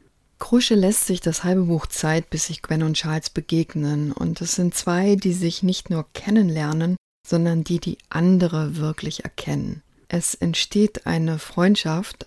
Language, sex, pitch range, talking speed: German, female, 160-185 Hz, 155 wpm